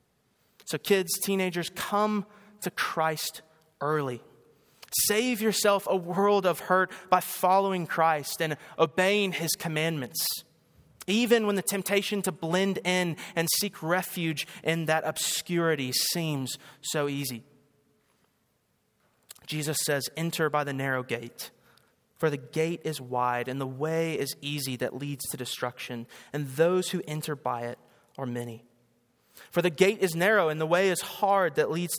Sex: male